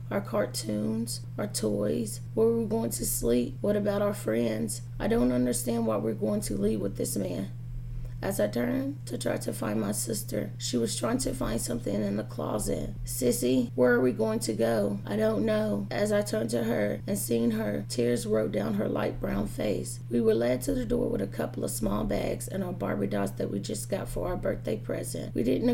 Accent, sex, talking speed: American, female, 220 wpm